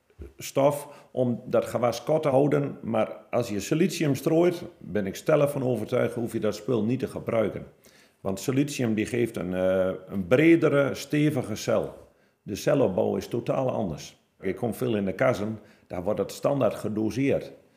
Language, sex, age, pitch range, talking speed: Dutch, male, 50-69, 110-140 Hz, 170 wpm